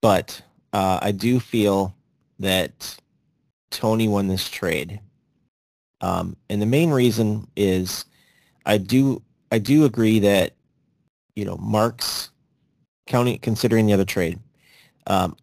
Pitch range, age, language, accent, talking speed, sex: 90-110 Hz, 30-49, English, American, 120 wpm, male